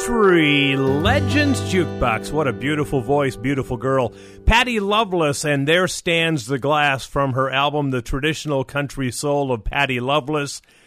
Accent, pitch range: American, 130-170 Hz